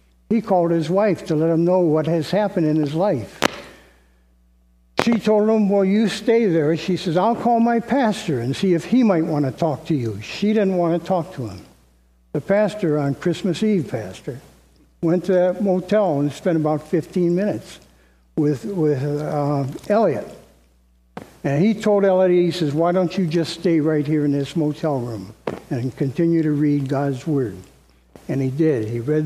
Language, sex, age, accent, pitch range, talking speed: English, male, 60-79, American, 135-180 Hz, 185 wpm